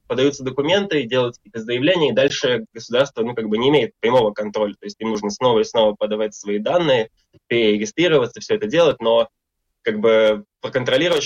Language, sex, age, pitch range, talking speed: Russian, male, 20-39, 105-125 Hz, 175 wpm